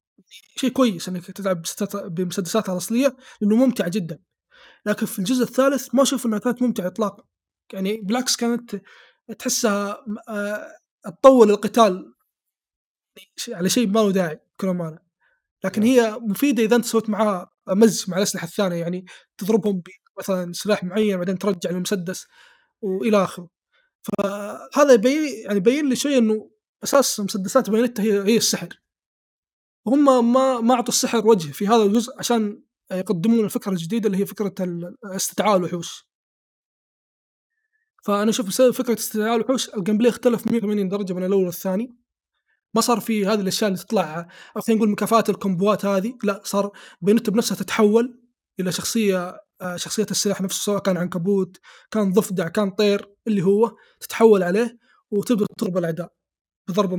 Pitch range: 195-235 Hz